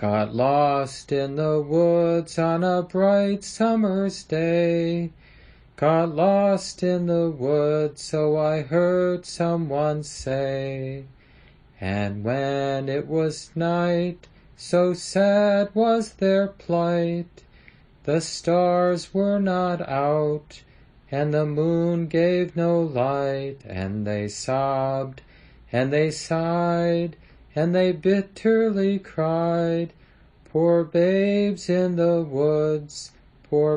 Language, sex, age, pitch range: English, male, 30-49, 145-180 Hz